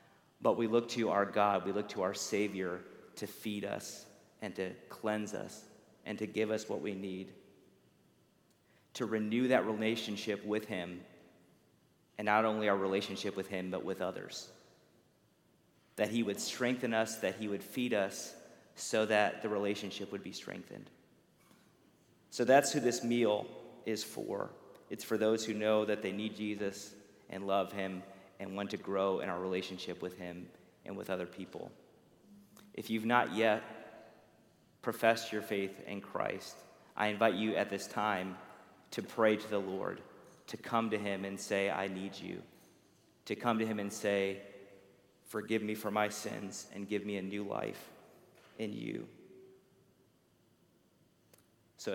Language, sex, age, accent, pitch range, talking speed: English, male, 40-59, American, 95-110 Hz, 160 wpm